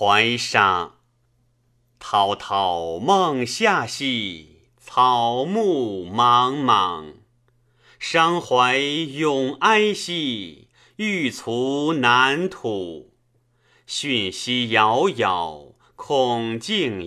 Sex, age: male, 30-49